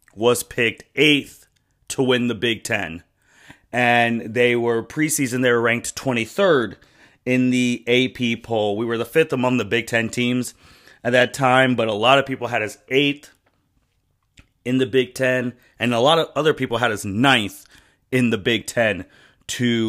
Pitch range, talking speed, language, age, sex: 115-135 Hz, 175 wpm, English, 30-49, male